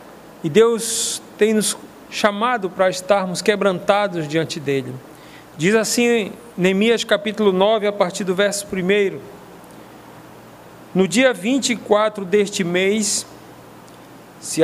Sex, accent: male, Brazilian